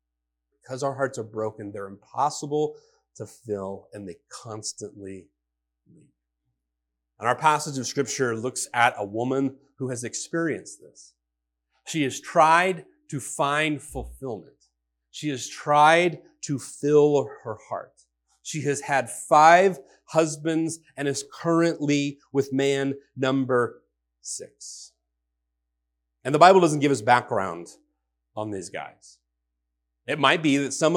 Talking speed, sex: 130 wpm, male